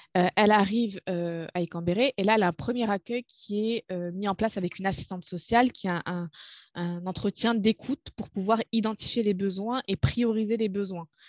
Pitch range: 185-220 Hz